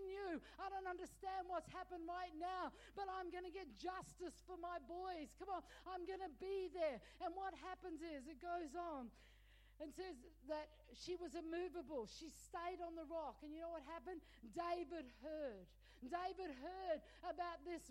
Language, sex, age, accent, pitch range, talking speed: English, female, 50-69, Australian, 315-365 Hz, 180 wpm